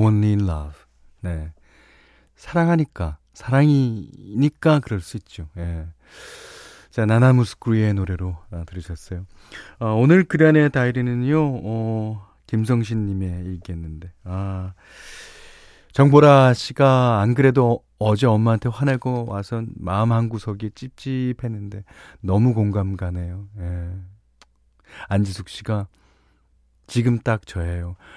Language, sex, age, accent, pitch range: Korean, male, 30-49, native, 90-125 Hz